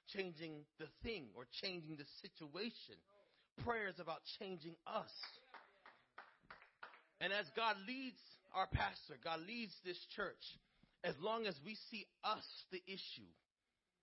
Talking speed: 130 wpm